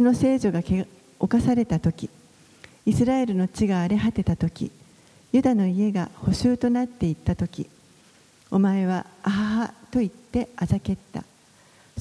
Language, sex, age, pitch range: Japanese, female, 50-69, 190-235 Hz